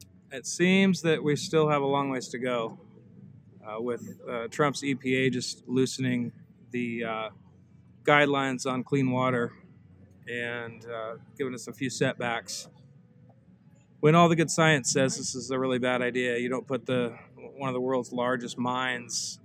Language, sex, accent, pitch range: English, male, American, 120-145 Hz